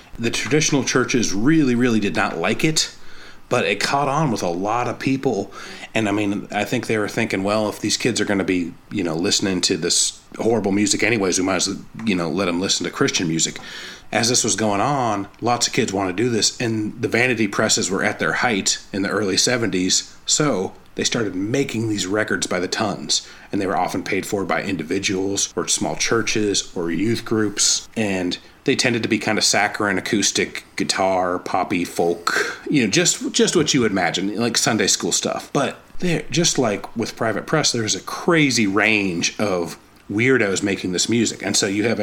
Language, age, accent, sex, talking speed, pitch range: English, 30-49, American, male, 205 wpm, 100-125 Hz